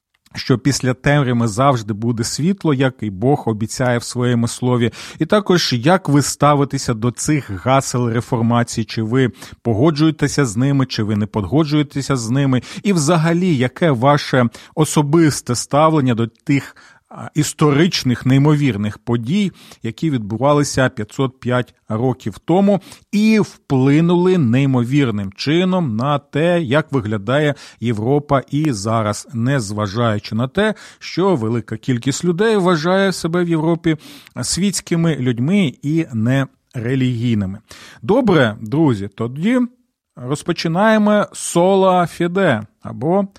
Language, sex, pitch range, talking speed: Ukrainian, male, 115-155 Hz, 115 wpm